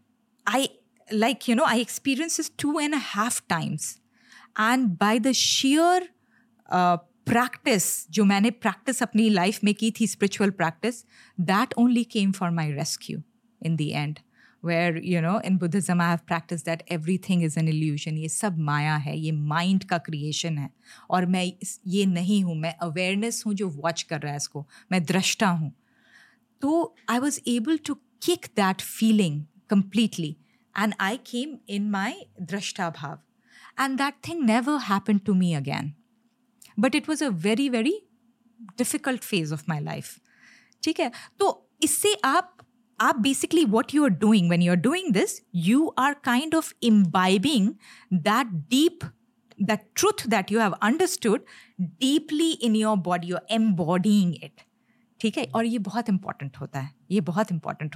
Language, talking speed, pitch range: Hindi, 165 wpm, 175-245 Hz